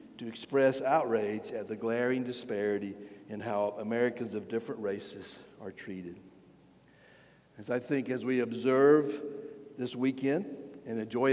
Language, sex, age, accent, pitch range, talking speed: English, male, 60-79, American, 120-160 Hz, 130 wpm